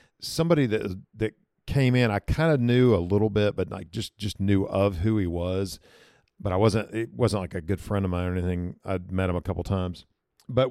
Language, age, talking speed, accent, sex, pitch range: English, 50-69, 235 wpm, American, male, 95-130 Hz